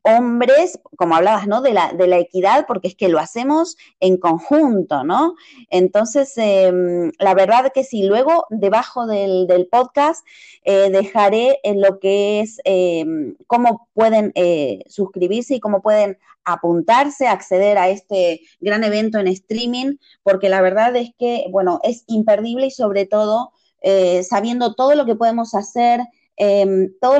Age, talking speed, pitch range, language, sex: 20-39, 160 wpm, 185-240 Hz, Spanish, female